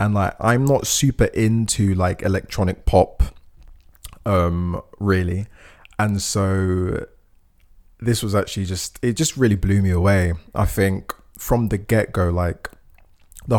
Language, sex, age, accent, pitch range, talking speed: English, male, 20-39, British, 90-105 Hz, 135 wpm